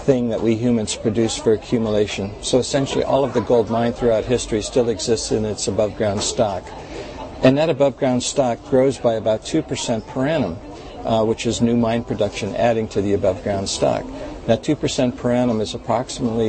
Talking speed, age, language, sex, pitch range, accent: 180 wpm, 60-79, English, male, 105-120 Hz, American